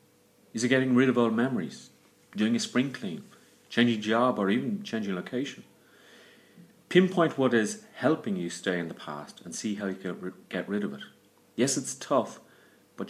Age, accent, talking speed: 40-59, British, 180 wpm